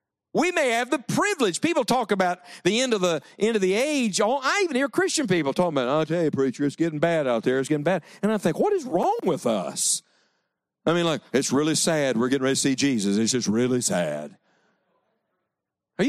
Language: English